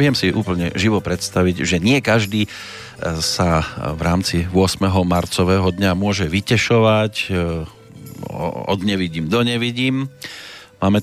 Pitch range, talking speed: 90-110 Hz, 115 wpm